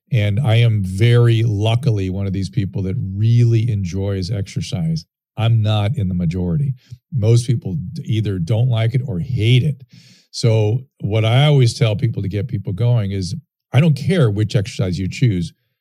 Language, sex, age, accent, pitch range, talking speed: English, male, 40-59, American, 105-135 Hz, 170 wpm